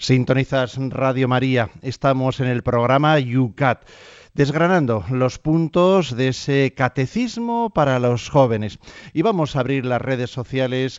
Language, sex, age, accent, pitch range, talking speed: Spanish, male, 40-59, Spanish, 120-150 Hz, 130 wpm